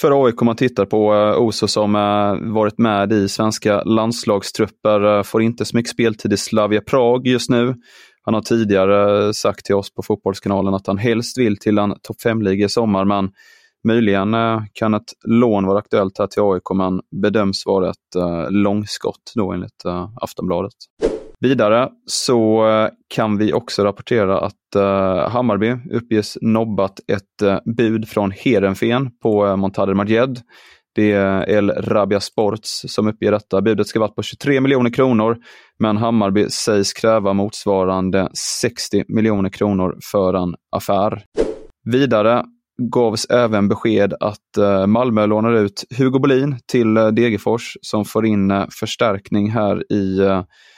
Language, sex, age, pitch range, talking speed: Swedish, male, 20-39, 100-115 Hz, 150 wpm